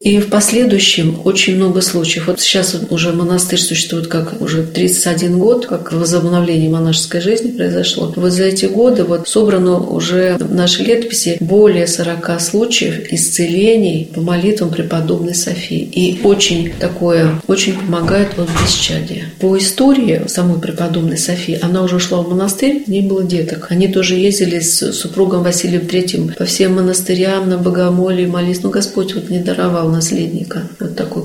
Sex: female